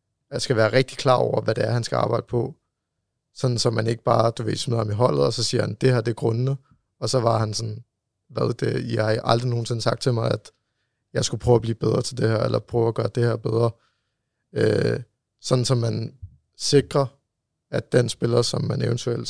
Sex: male